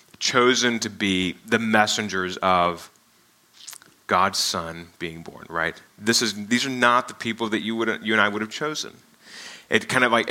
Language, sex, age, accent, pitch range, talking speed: English, male, 20-39, American, 100-125 Hz, 185 wpm